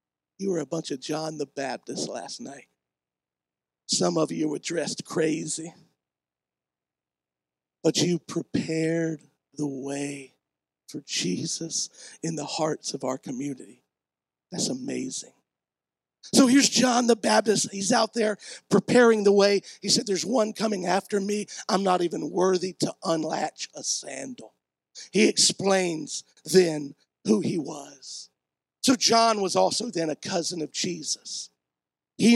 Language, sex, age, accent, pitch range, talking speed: English, male, 50-69, American, 150-210 Hz, 135 wpm